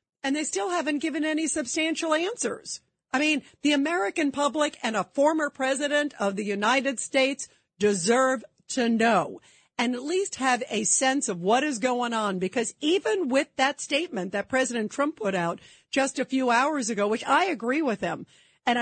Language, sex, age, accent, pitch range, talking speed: English, female, 50-69, American, 210-280 Hz, 180 wpm